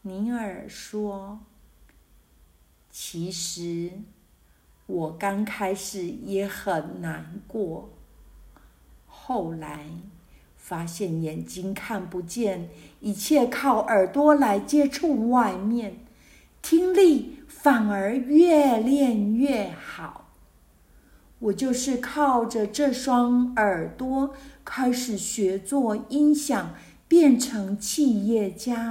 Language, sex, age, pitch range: Chinese, female, 50-69, 165-245 Hz